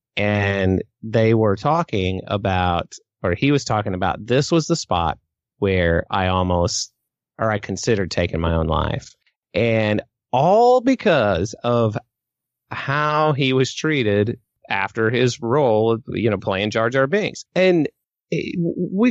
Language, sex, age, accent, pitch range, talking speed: English, male, 30-49, American, 110-155 Hz, 135 wpm